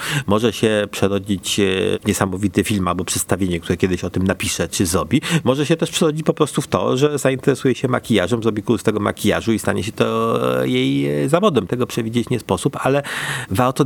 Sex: male